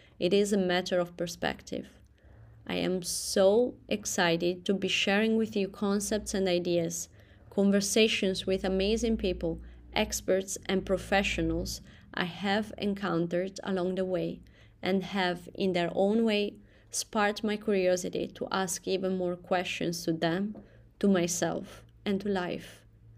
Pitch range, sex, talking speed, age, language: 175-210 Hz, female, 135 wpm, 20-39, English